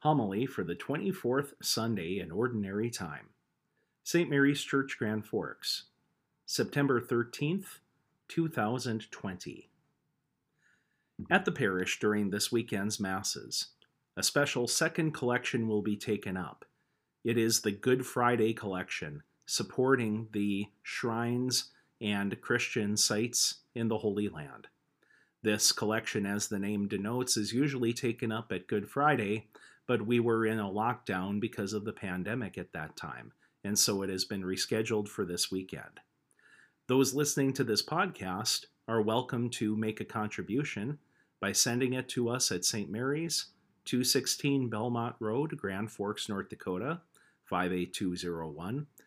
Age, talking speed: 40-59, 135 wpm